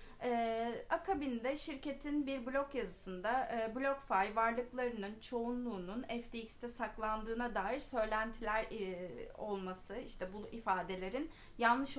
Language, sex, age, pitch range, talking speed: Turkish, female, 30-49, 195-245 Hz, 100 wpm